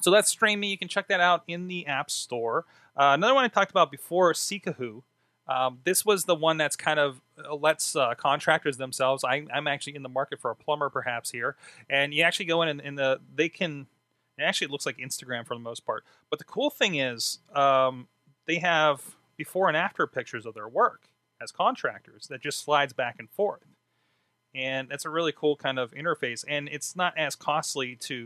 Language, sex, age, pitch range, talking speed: English, male, 30-49, 130-160 Hz, 205 wpm